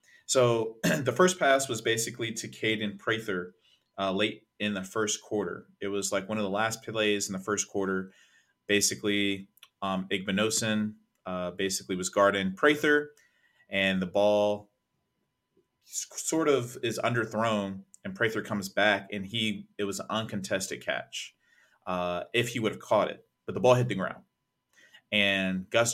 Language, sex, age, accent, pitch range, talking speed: English, male, 30-49, American, 95-115 Hz, 155 wpm